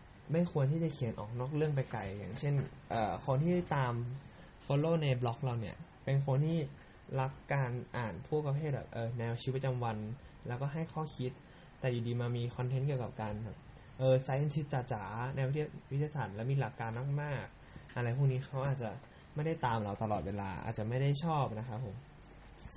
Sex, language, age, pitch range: male, Thai, 10-29, 120-145 Hz